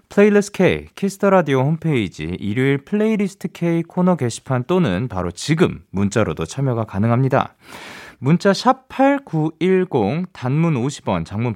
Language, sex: Korean, male